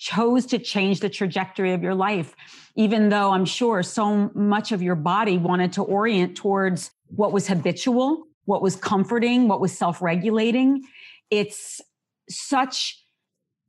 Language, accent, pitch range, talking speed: English, American, 190-235 Hz, 145 wpm